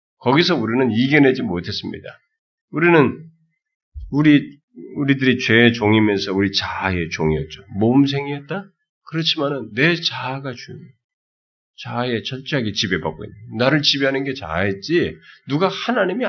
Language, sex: Korean, male